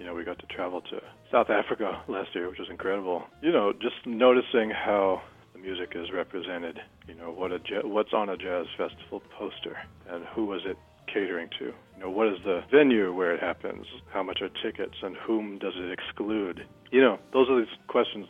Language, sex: English, male